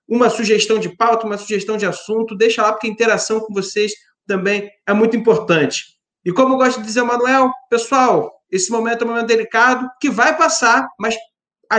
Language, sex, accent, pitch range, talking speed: Portuguese, male, Brazilian, 215-250 Hz, 200 wpm